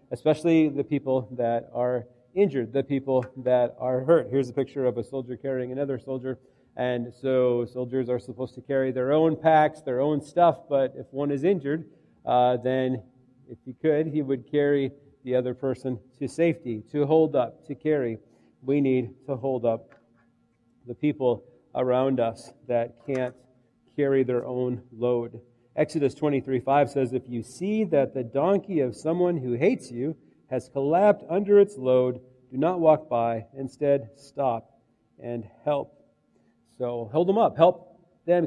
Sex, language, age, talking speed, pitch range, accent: male, English, 40-59, 160 wpm, 125-155 Hz, American